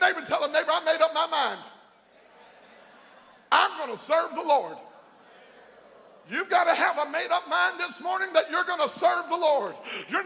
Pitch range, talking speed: 335-415 Hz, 200 wpm